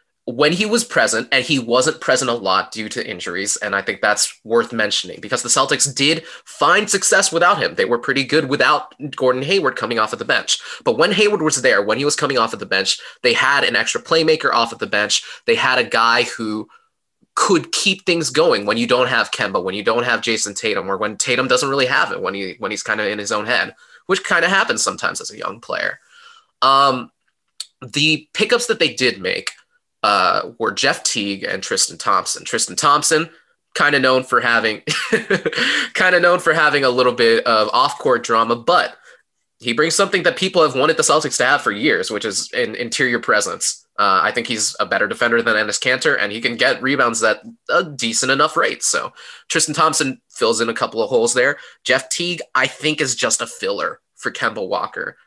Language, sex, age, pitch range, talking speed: English, male, 20-39, 130-215 Hz, 215 wpm